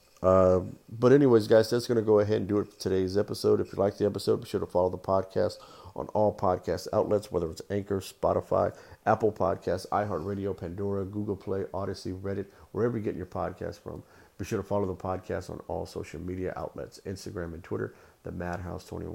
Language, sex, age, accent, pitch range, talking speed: English, male, 50-69, American, 90-105 Hz, 200 wpm